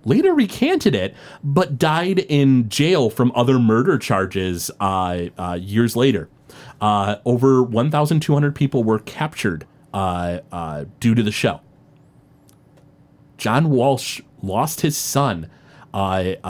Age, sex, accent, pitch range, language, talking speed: 30-49, male, American, 95-135 Hz, English, 120 wpm